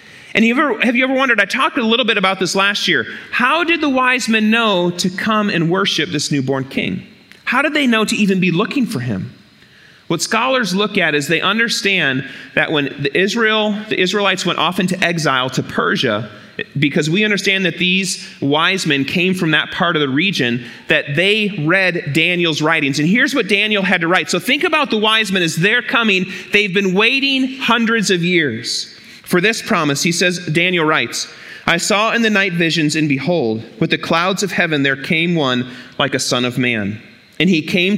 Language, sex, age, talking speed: English, male, 30-49, 200 wpm